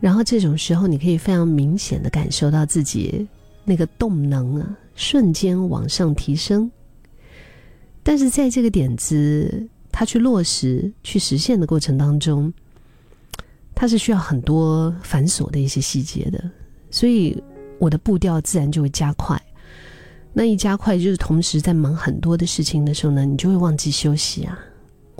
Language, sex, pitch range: Chinese, female, 150-190 Hz